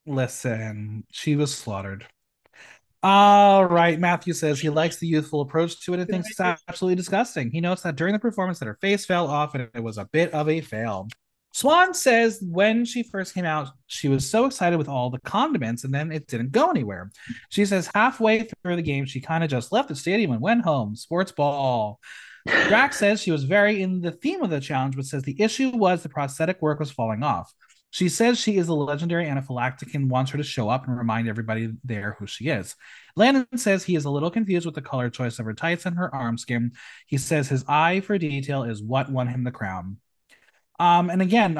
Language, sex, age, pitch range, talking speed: English, male, 30-49, 130-180 Hz, 220 wpm